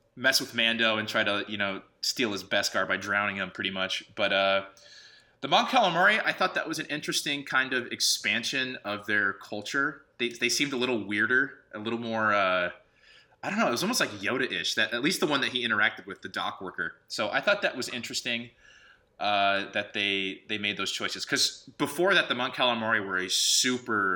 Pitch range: 100-130 Hz